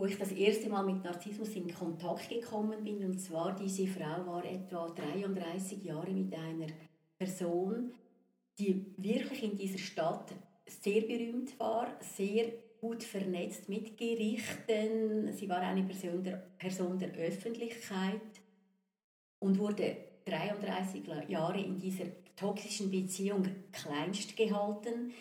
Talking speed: 125 wpm